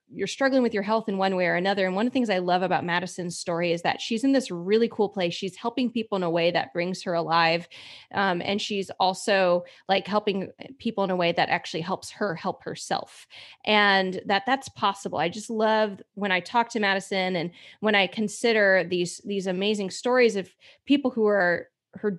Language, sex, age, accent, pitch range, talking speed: English, female, 20-39, American, 180-220 Hz, 215 wpm